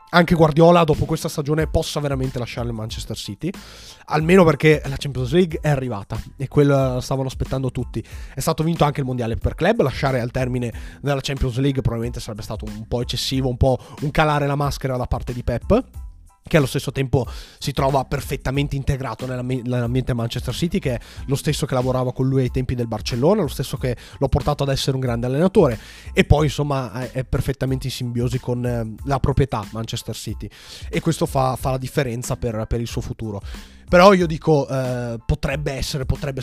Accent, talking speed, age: native, 195 wpm, 30-49